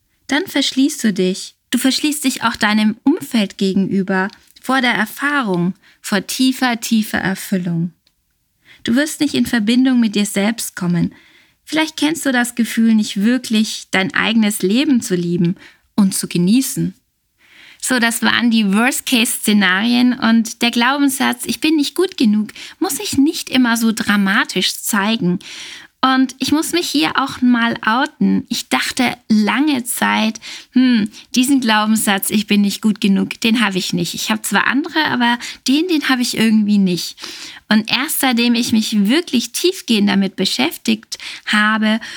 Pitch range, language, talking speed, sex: 210-270 Hz, German, 150 wpm, female